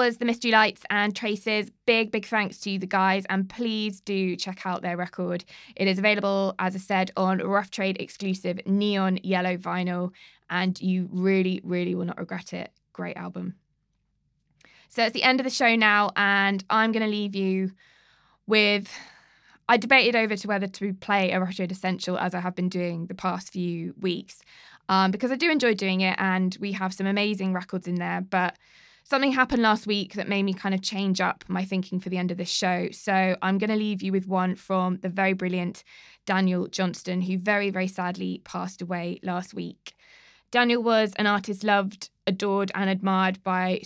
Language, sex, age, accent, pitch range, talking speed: English, female, 20-39, British, 185-205 Hz, 195 wpm